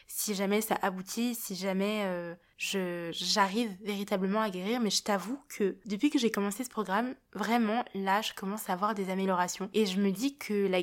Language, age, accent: French, 20-39, French